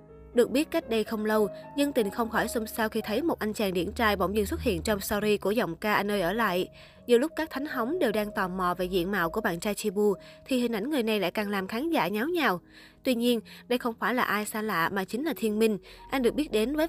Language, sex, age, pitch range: Vietnamese, female, 20-39, 200-240 Hz